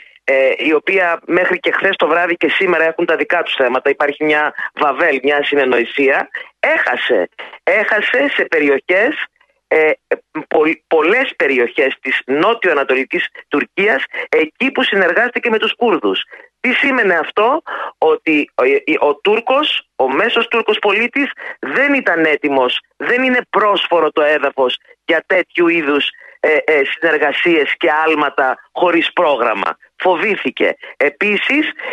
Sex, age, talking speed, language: male, 30-49, 130 wpm, Greek